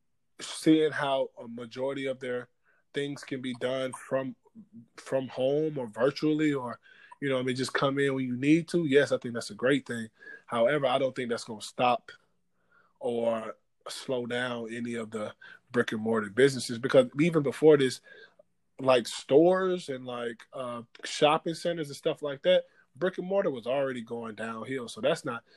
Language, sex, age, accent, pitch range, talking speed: English, male, 20-39, American, 120-155 Hz, 180 wpm